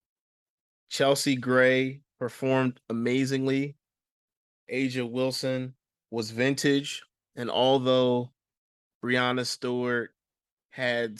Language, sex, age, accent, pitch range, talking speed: English, male, 20-39, American, 115-130 Hz, 70 wpm